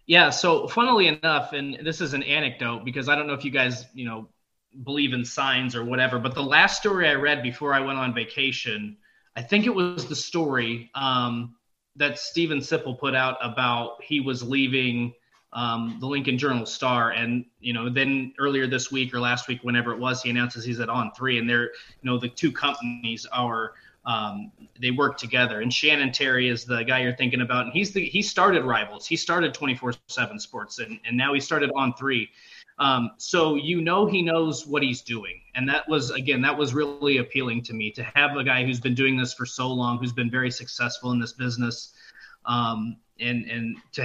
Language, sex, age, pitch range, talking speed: English, male, 20-39, 120-150 Hz, 210 wpm